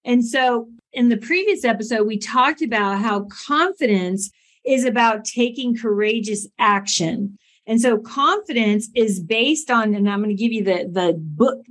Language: English